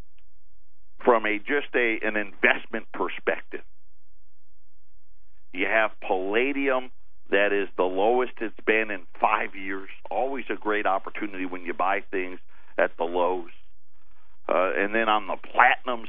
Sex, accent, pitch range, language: male, American, 90-115 Hz, English